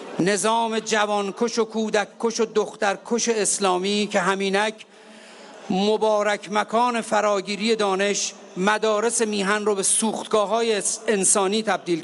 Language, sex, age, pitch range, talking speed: Persian, male, 50-69, 185-225 Hz, 100 wpm